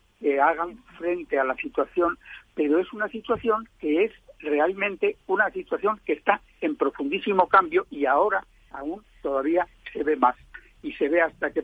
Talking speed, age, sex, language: 165 wpm, 60-79, male, Spanish